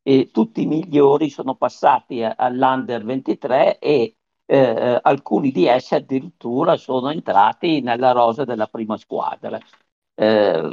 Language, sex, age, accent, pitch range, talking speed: Italian, male, 50-69, native, 115-155 Hz, 125 wpm